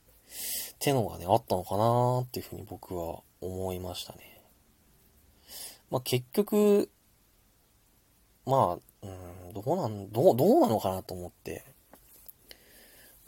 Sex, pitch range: male, 95-150 Hz